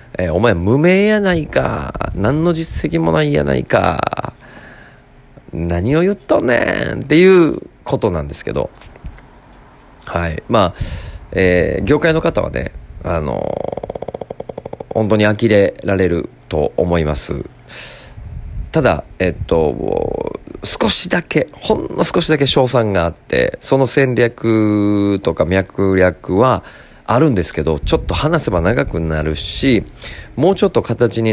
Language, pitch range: Japanese, 85-120 Hz